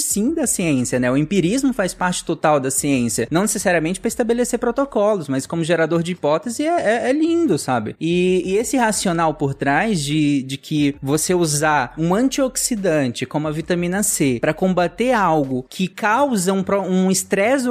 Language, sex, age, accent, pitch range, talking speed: Portuguese, male, 20-39, Brazilian, 150-215 Hz, 175 wpm